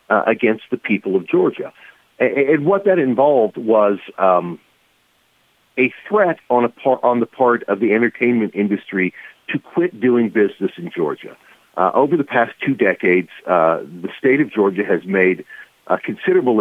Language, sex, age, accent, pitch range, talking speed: English, male, 50-69, American, 100-140 Hz, 165 wpm